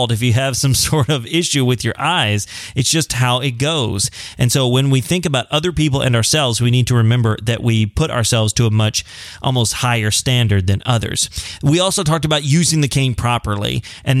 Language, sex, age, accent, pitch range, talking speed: English, male, 30-49, American, 120-160 Hz, 210 wpm